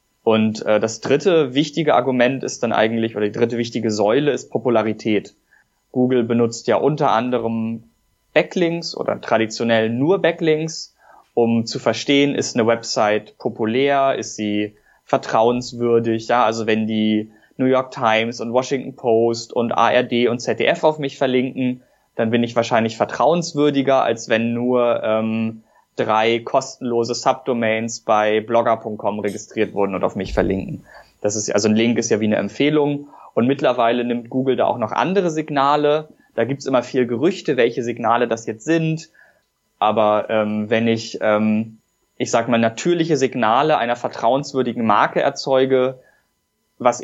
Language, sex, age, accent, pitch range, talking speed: German, male, 20-39, German, 110-130 Hz, 150 wpm